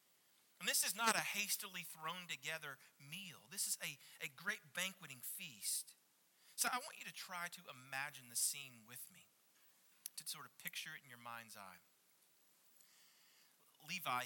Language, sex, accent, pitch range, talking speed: English, male, American, 130-175 Hz, 160 wpm